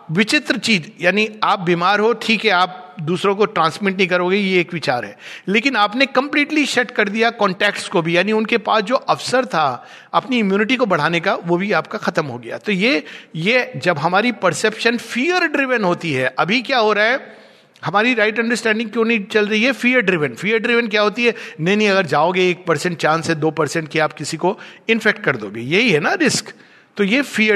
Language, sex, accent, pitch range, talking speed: Hindi, male, native, 160-220 Hz, 210 wpm